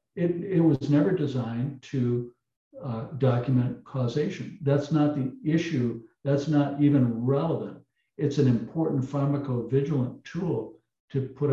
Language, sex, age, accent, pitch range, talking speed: English, male, 60-79, American, 120-140 Hz, 125 wpm